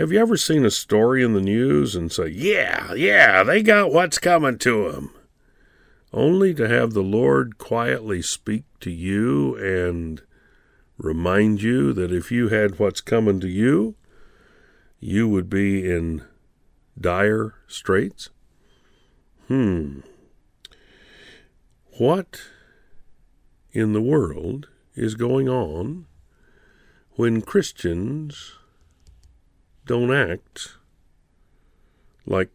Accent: American